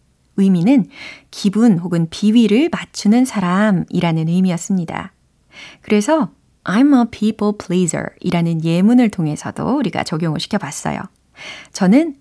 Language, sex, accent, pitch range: Korean, female, native, 175-245 Hz